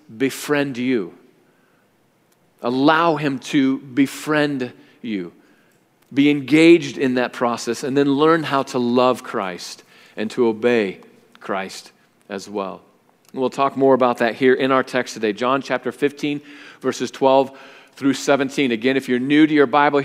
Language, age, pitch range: English, 40-59, 115-140 Hz